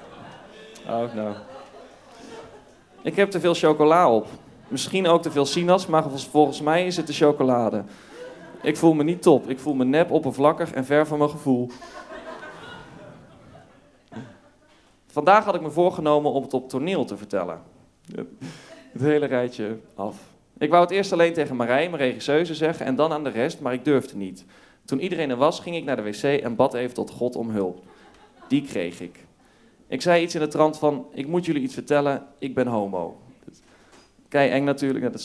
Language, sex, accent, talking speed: Dutch, male, Dutch, 185 wpm